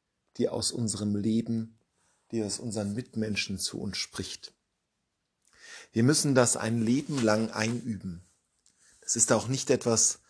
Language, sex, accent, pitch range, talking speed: German, male, German, 105-130 Hz, 135 wpm